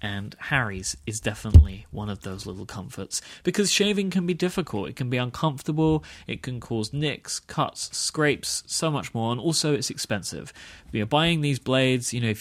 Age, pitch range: 30-49, 110-150 Hz